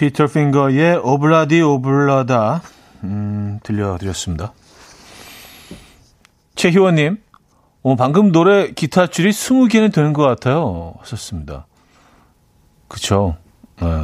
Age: 40-59